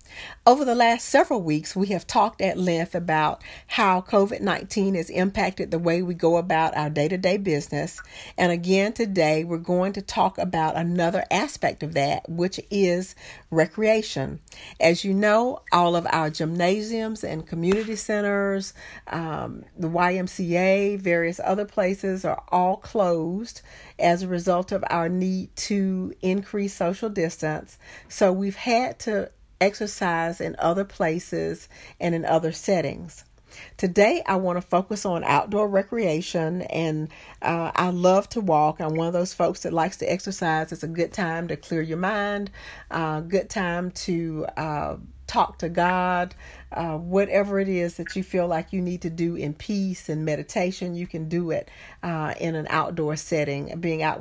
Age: 50-69